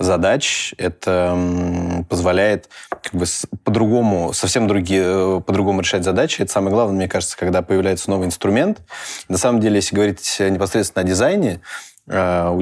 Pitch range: 90-105 Hz